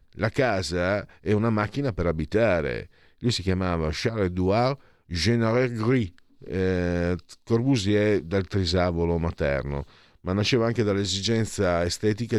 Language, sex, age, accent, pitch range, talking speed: Italian, male, 50-69, native, 80-105 Hz, 110 wpm